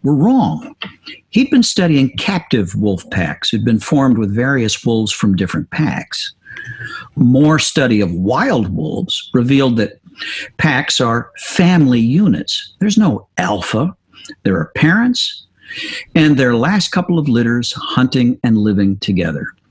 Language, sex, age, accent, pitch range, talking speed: English, male, 50-69, American, 105-140 Hz, 135 wpm